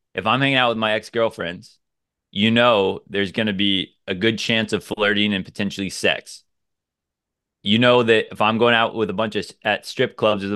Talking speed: 205 wpm